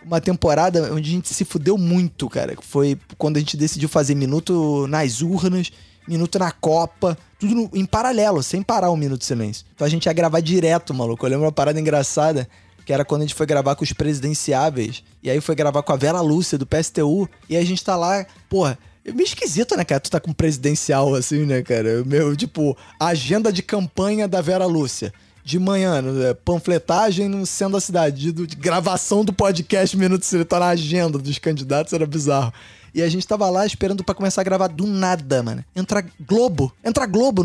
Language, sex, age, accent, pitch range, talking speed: Portuguese, male, 20-39, Brazilian, 145-200 Hz, 205 wpm